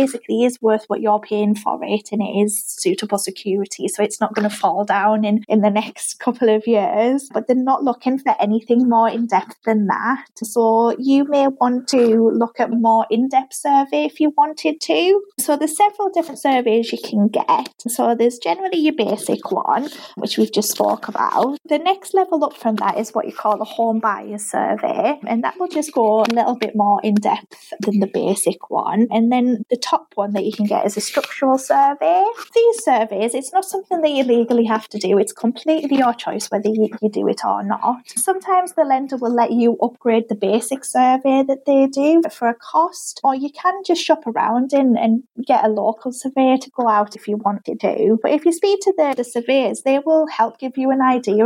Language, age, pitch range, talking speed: English, 20-39, 220-275 Hz, 220 wpm